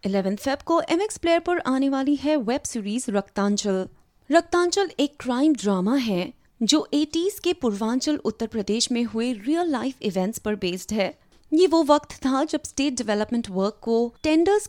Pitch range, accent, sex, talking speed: 210-310 Hz, native, female, 170 wpm